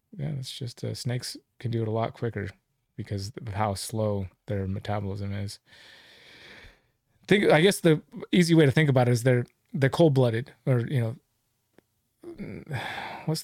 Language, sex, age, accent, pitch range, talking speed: English, male, 30-49, American, 110-135 Hz, 160 wpm